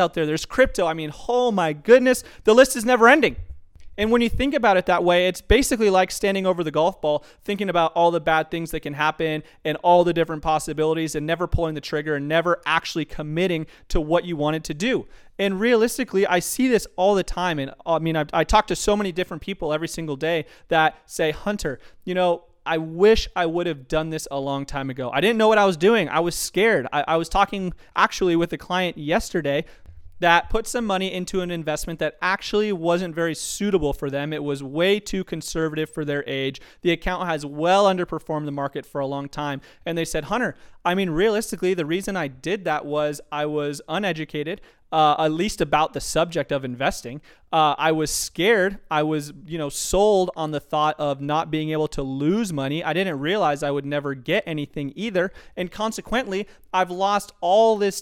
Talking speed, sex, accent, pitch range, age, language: 215 wpm, male, American, 150-190 Hz, 30-49, English